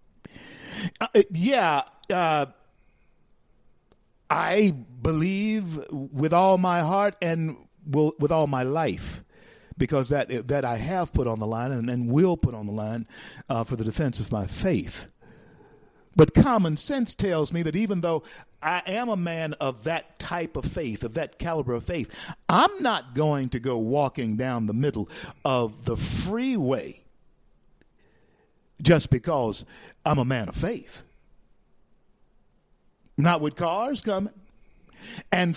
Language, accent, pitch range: English, American, 130-195 Hz